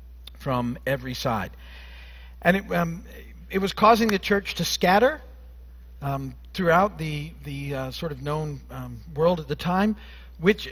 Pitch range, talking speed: 125-185 Hz, 150 wpm